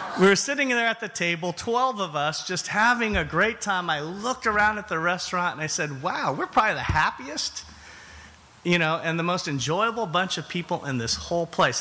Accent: American